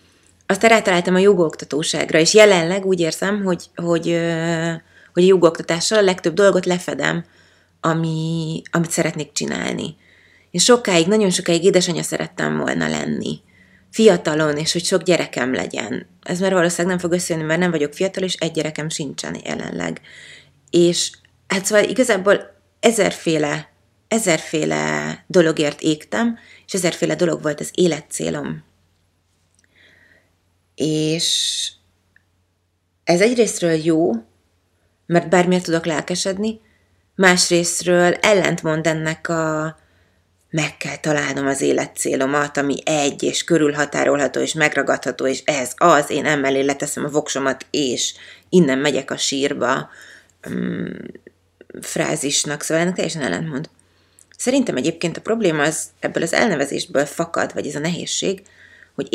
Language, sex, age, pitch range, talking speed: Hungarian, female, 30-49, 135-180 Hz, 120 wpm